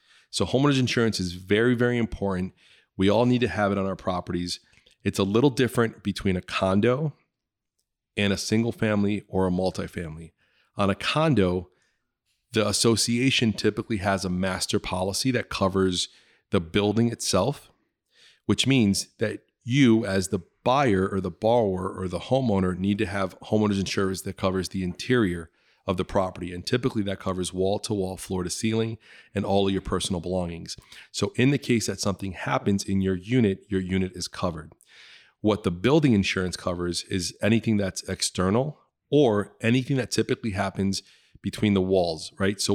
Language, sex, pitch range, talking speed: English, male, 95-110 Hz, 165 wpm